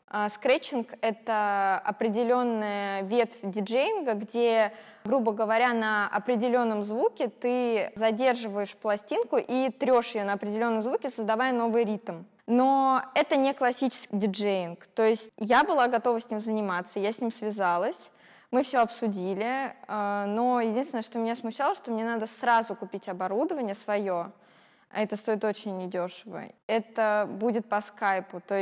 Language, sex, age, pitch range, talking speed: Russian, female, 20-39, 210-245 Hz, 135 wpm